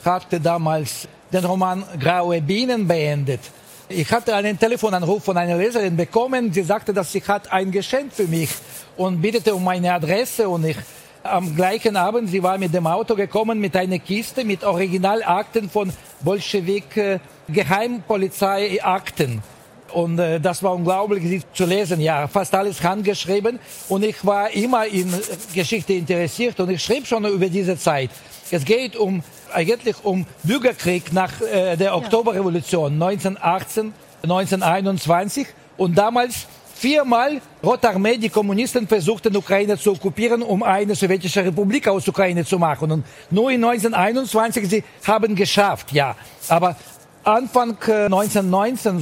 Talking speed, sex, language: 145 wpm, male, German